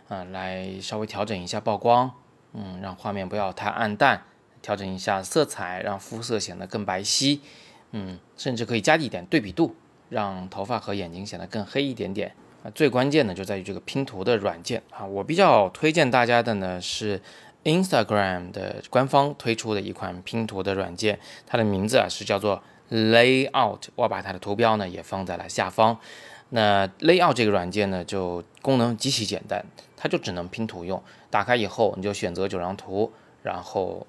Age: 20-39